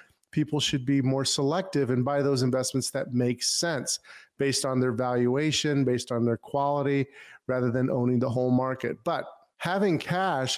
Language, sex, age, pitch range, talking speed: English, male, 40-59, 125-145 Hz, 165 wpm